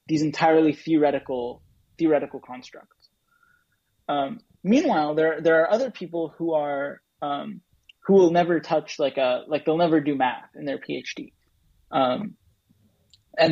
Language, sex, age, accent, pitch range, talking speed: English, male, 20-39, American, 140-170 Hz, 140 wpm